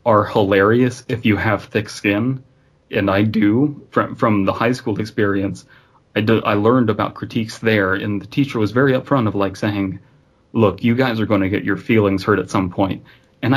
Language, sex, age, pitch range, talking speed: English, male, 30-49, 105-125 Hz, 200 wpm